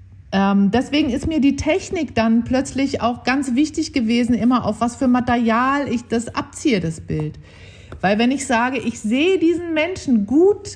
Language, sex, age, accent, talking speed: German, female, 50-69, German, 165 wpm